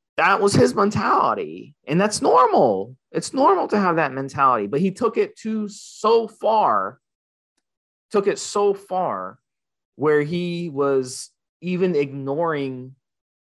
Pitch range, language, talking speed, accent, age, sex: 120-165 Hz, English, 130 wpm, American, 30-49, male